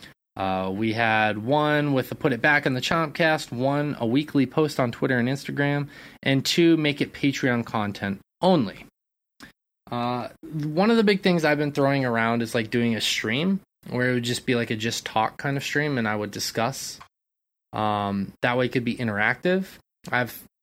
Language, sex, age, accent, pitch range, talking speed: English, male, 20-39, American, 115-145 Hz, 195 wpm